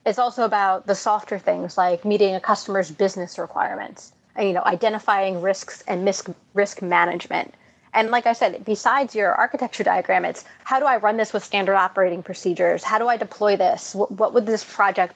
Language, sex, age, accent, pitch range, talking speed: English, female, 30-49, American, 190-225 Hz, 185 wpm